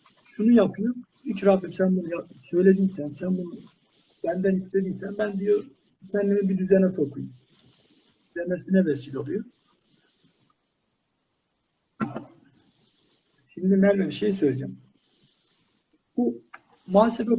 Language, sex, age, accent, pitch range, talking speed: Turkish, male, 60-79, native, 165-205 Hz, 95 wpm